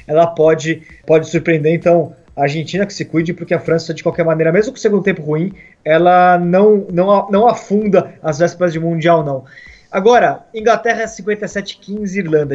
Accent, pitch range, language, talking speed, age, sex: Brazilian, 160-195 Hz, Portuguese, 180 wpm, 20-39, male